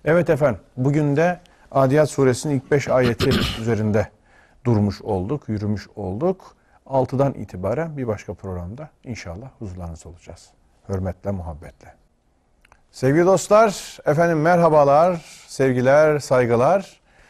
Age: 40-59